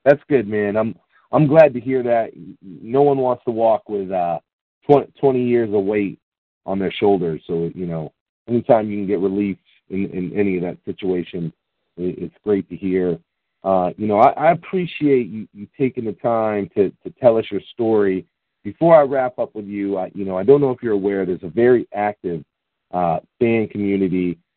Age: 40-59